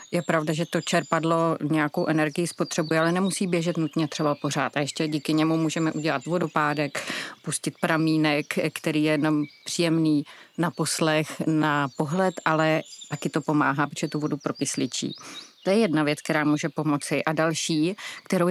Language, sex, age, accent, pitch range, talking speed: Czech, female, 30-49, native, 155-180 Hz, 155 wpm